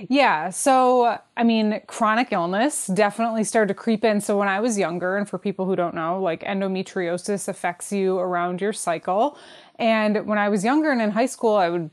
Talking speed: 200 wpm